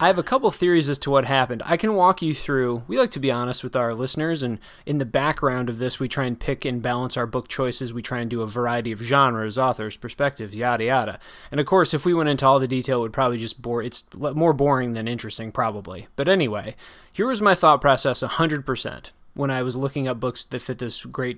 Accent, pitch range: American, 125-150 Hz